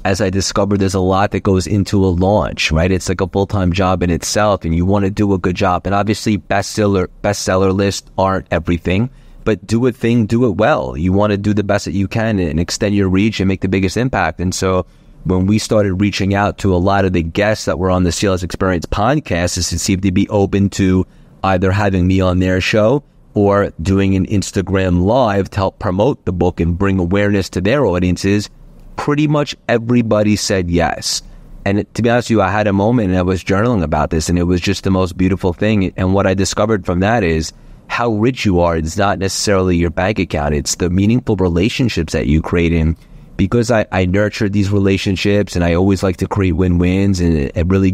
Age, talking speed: 30-49, 220 wpm